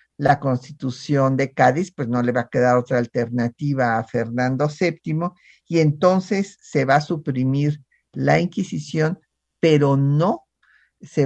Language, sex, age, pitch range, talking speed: Spanish, male, 50-69, 130-165 Hz, 140 wpm